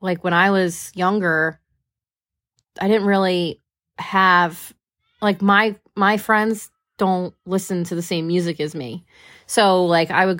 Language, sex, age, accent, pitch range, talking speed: English, female, 30-49, American, 160-190 Hz, 145 wpm